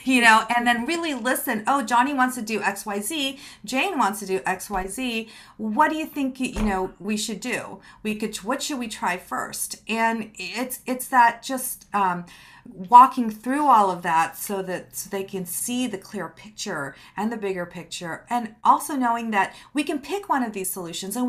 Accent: American